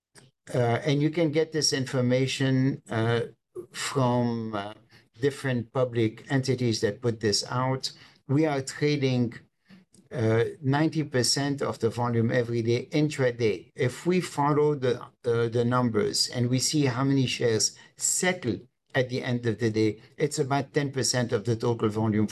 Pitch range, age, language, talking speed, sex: 115-145 Hz, 60-79, English, 150 wpm, male